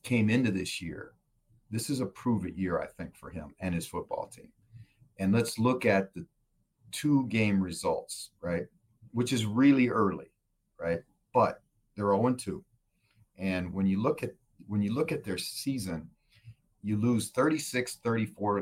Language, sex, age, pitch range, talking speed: English, male, 40-59, 95-120 Hz, 155 wpm